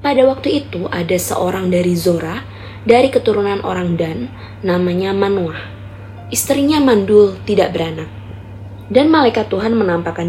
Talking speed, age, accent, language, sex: 120 wpm, 20-39, native, Indonesian, female